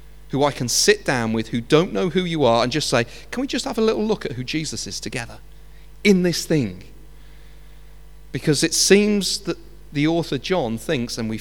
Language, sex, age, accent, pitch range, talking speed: English, male, 40-59, British, 115-160 Hz, 210 wpm